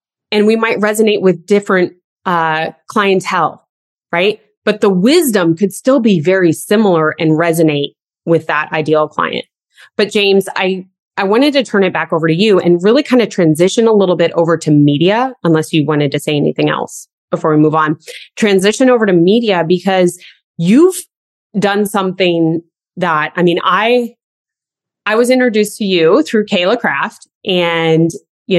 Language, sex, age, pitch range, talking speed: English, female, 20-39, 170-220 Hz, 165 wpm